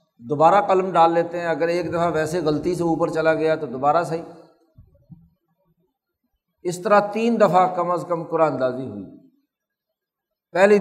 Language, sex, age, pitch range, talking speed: Urdu, male, 60-79, 155-185 Hz, 150 wpm